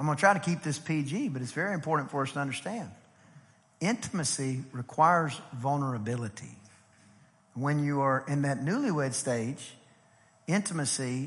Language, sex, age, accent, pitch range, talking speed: English, male, 50-69, American, 130-150 Hz, 145 wpm